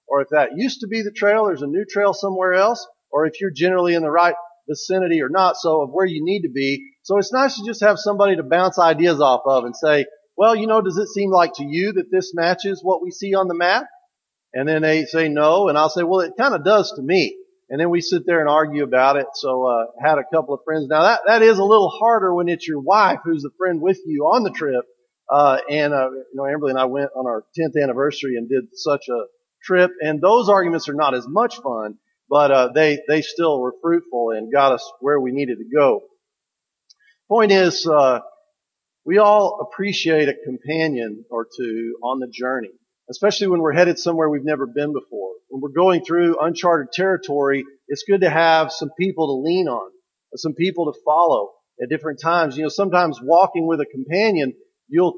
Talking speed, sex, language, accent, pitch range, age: 225 wpm, male, English, American, 145-195 Hz, 40-59